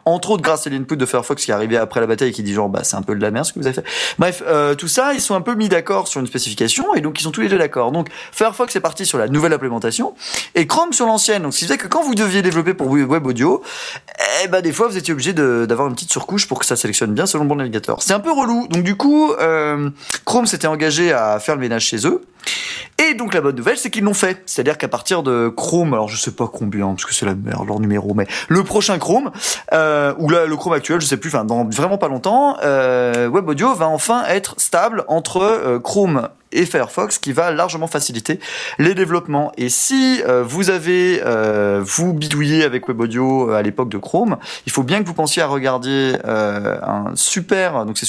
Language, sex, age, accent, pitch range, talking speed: French, male, 30-49, French, 120-175 Hz, 250 wpm